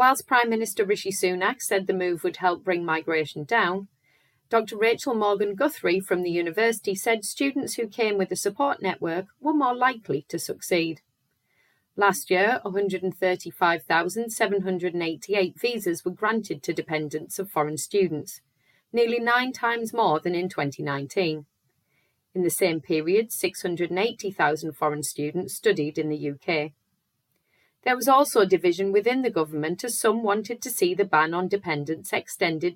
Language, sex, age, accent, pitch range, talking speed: English, female, 30-49, British, 155-220 Hz, 145 wpm